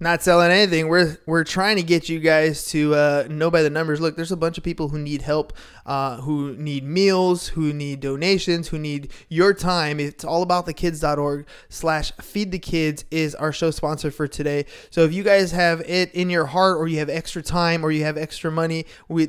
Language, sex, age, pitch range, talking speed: English, male, 20-39, 150-170 Hz, 205 wpm